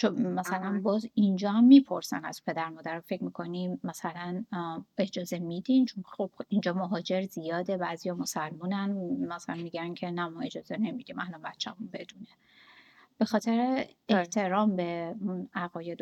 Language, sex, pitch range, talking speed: Persian, female, 185-250 Hz, 140 wpm